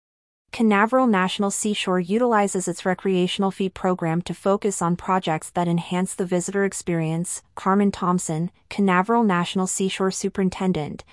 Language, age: English, 30-49